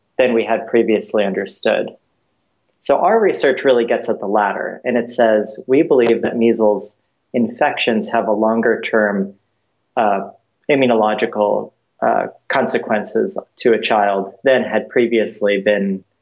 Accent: American